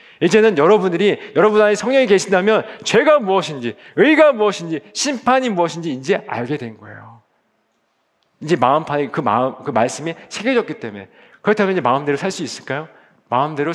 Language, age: Korean, 40-59